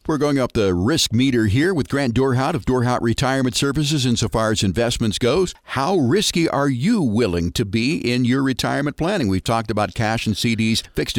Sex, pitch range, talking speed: male, 100-130 Hz, 195 wpm